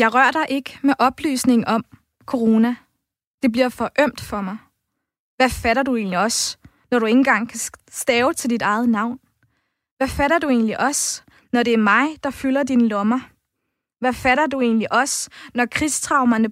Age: 20-39